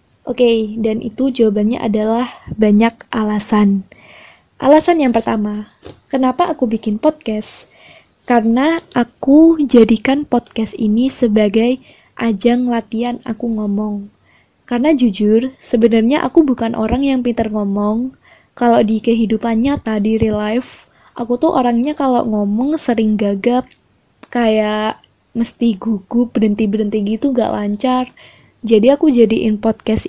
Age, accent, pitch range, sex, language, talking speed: 20-39, native, 220-255 Hz, female, Indonesian, 115 wpm